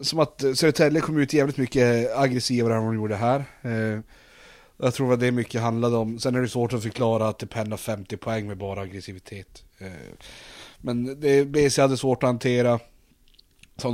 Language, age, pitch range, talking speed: Swedish, 30-49, 100-120 Hz, 190 wpm